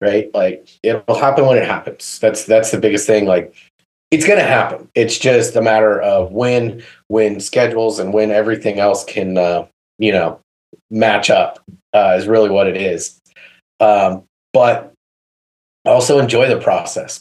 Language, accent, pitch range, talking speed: English, American, 95-110 Hz, 165 wpm